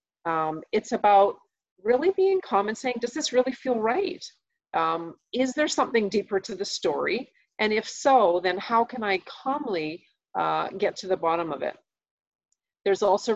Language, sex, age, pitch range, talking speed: English, female, 40-59, 170-220 Hz, 170 wpm